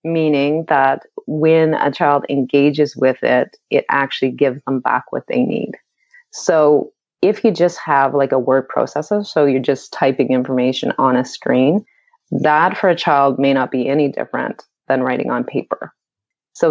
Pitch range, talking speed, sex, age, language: 135-160 Hz, 170 wpm, female, 30-49, English